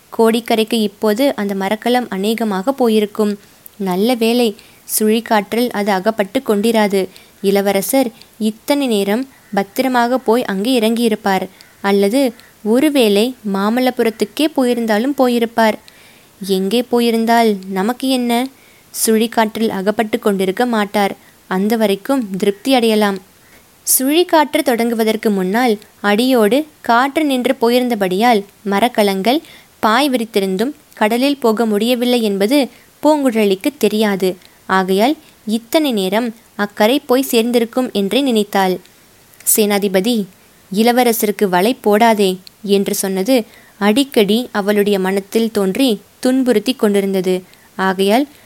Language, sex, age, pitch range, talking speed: Tamil, female, 20-39, 205-245 Hz, 90 wpm